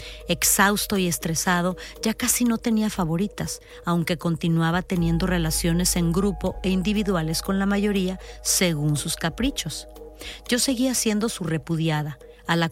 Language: Spanish